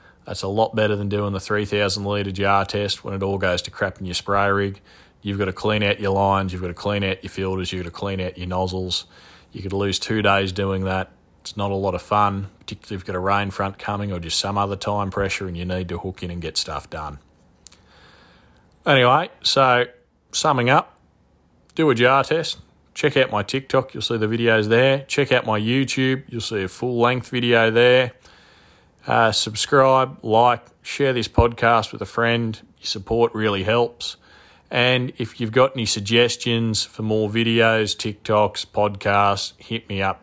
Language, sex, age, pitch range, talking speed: English, male, 20-39, 95-115 Hz, 195 wpm